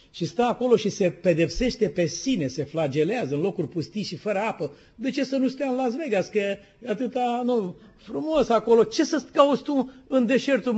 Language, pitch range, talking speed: Romanian, 175-245 Hz, 200 wpm